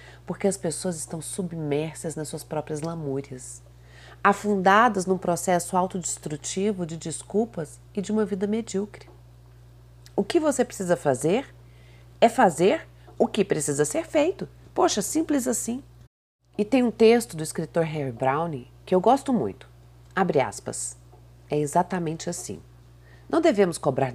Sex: female